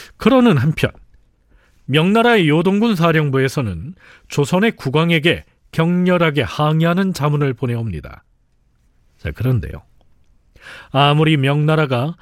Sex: male